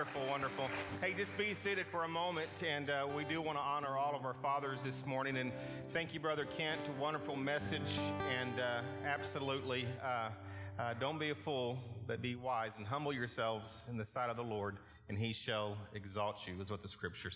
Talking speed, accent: 205 wpm, American